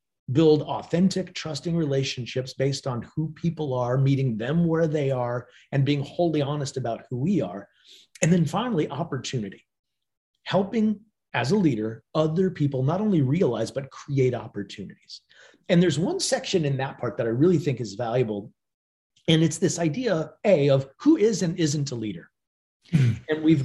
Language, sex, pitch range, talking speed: English, male, 130-185 Hz, 165 wpm